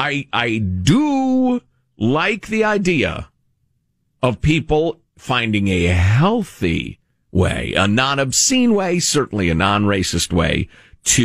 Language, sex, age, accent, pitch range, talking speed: English, male, 50-69, American, 95-135 Hz, 105 wpm